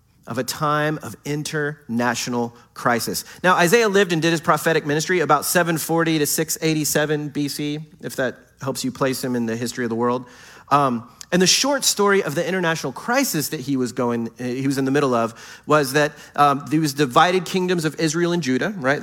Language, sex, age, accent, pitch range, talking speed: English, male, 30-49, American, 120-160 Hz, 185 wpm